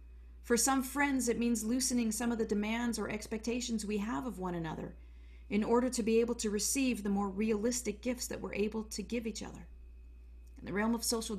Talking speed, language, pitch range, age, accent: 210 wpm, English, 175-240 Hz, 40-59, American